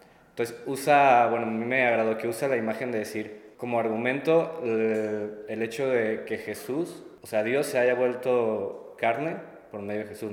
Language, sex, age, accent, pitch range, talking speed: Spanish, male, 20-39, Mexican, 110-125 Hz, 185 wpm